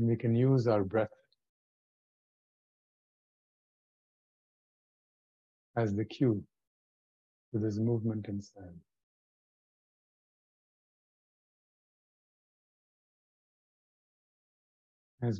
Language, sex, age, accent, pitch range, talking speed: English, male, 50-69, American, 100-120 Hz, 55 wpm